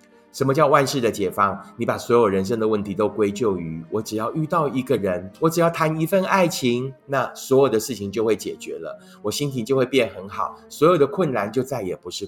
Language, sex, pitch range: Chinese, male, 105-150 Hz